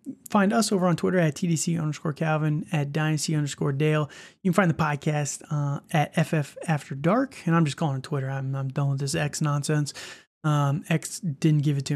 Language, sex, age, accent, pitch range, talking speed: English, male, 30-49, American, 145-175 Hz, 210 wpm